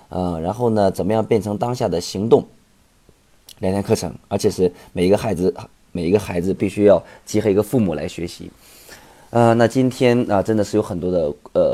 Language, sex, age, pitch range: Chinese, male, 20-39, 90-110 Hz